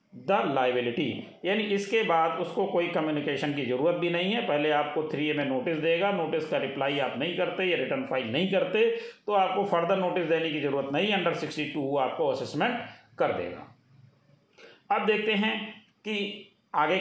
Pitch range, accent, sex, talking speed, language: 150-210 Hz, native, male, 180 wpm, Hindi